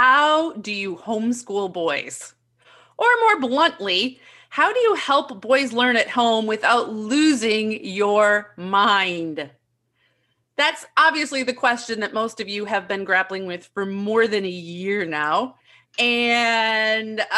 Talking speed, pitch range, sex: 135 wpm, 195-270 Hz, female